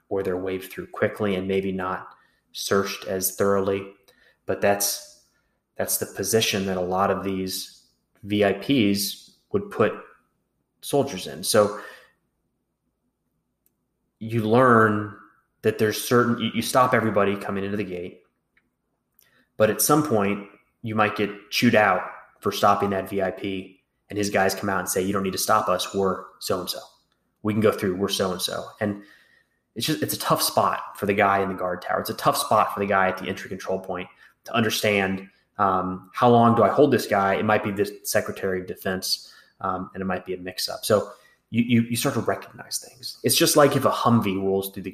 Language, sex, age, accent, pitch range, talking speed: English, male, 20-39, American, 95-105 Hz, 185 wpm